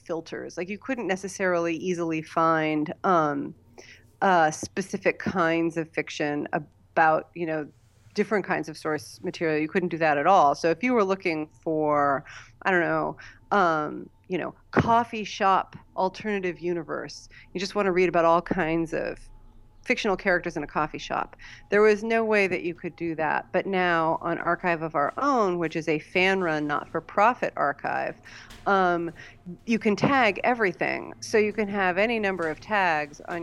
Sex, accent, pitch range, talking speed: female, American, 155-185 Hz, 175 wpm